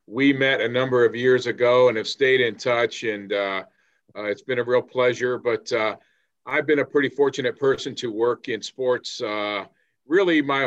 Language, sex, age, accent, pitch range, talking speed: English, male, 50-69, American, 120-150 Hz, 195 wpm